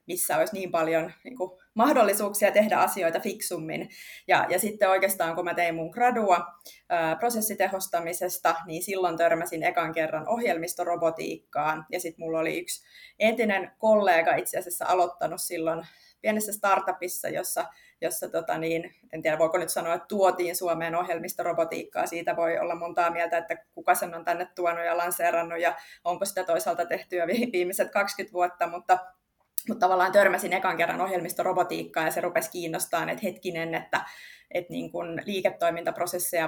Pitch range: 165-185 Hz